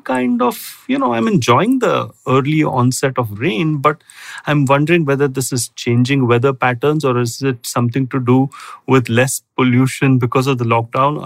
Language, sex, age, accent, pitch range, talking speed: English, male, 30-49, Indian, 120-150 Hz, 175 wpm